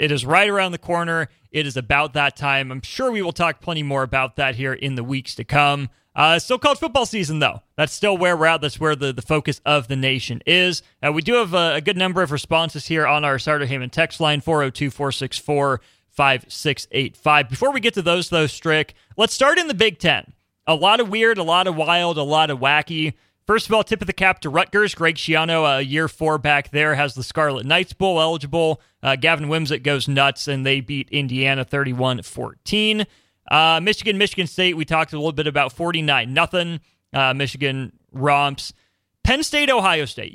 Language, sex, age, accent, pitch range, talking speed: English, male, 30-49, American, 140-175 Hz, 205 wpm